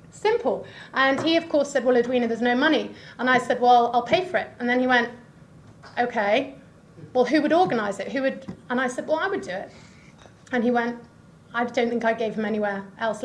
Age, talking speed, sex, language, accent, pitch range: 30-49, 225 wpm, female, English, British, 220-260 Hz